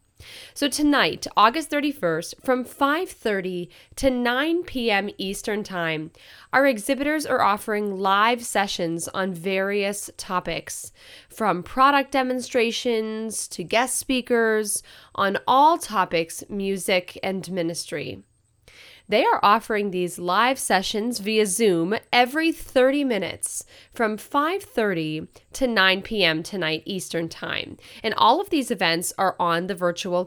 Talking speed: 120 wpm